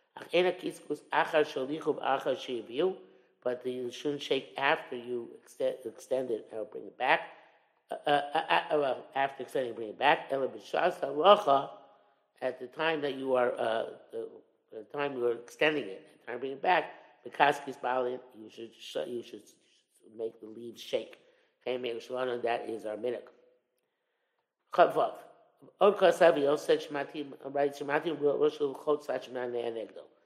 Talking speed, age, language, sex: 105 wpm, 50-69, English, male